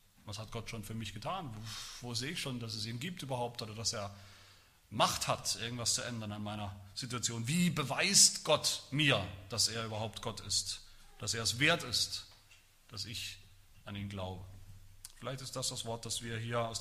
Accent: German